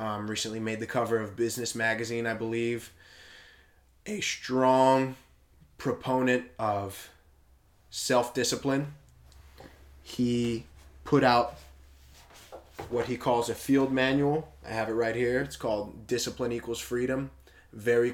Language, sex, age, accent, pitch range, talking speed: English, male, 20-39, American, 100-120 Hz, 115 wpm